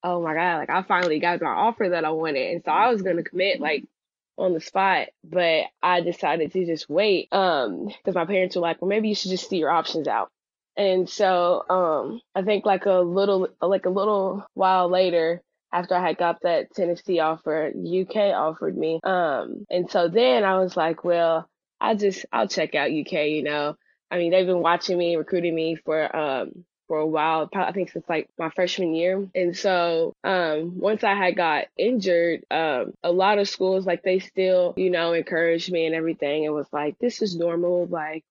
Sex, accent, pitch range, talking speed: female, American, 165-190 Hz, 210 wpm